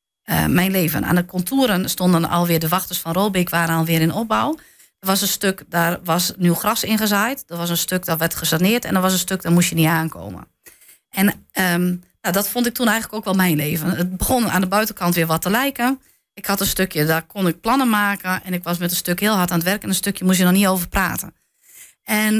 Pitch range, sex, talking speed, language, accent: 175-215 Hz, female, 250 wpm, Dutch, Dutch